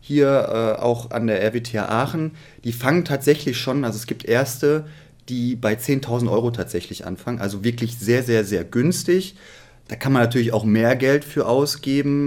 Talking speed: 175 wpm